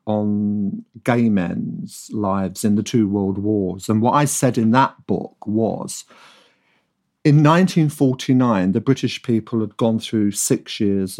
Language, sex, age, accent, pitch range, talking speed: English, male, 50-69, British, 100-130 Hz, 145 wpm